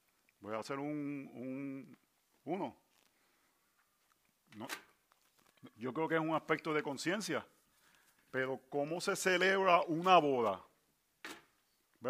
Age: 40-59